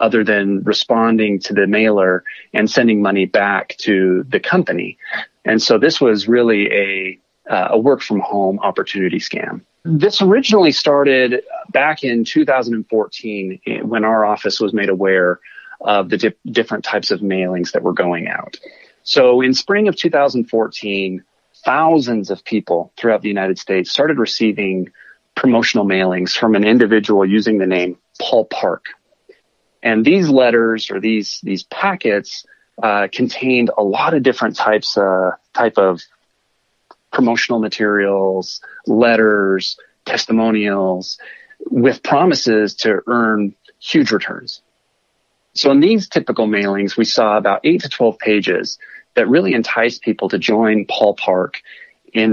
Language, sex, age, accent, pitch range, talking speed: English, male, 30-49, American, 95-120 Hz, 135 wpm